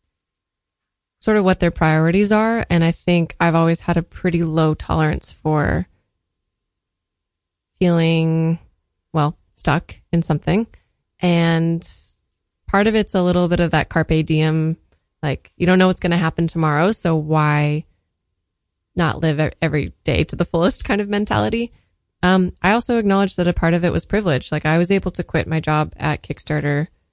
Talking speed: 165 wpm